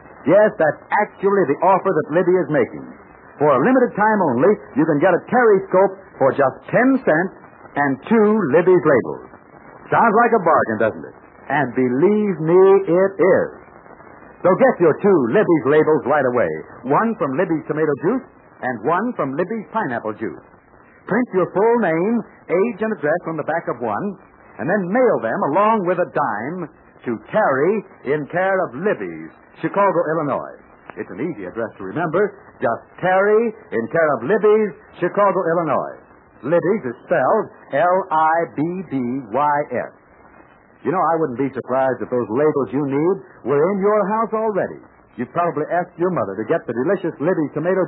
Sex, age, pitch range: male, 60-79, 145-210 Hz